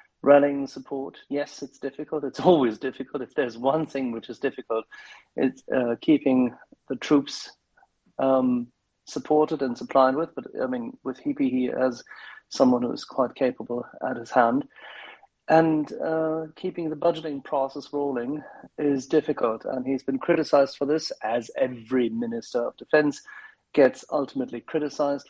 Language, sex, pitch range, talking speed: English, male, 130-160 Hz, 145 wpm